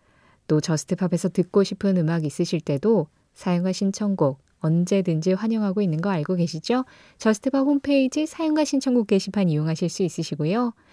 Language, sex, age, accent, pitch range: Korean, female, 20-39, native, 155-215 Hz